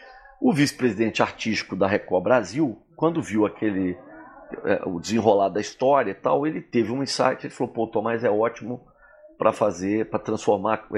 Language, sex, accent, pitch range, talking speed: Portuguese, male, Brazilian, 110-170 Hz, 165 wpm